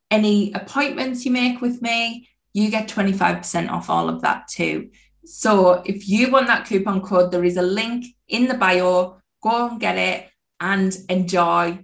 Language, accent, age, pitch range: English, British, 20-39, 185-235 Hz